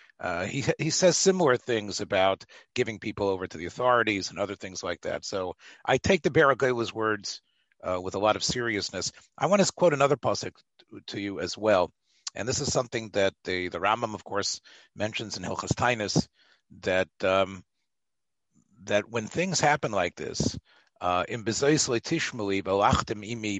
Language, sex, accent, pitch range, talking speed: English, male, American, 100-130 Hz, 165 wpm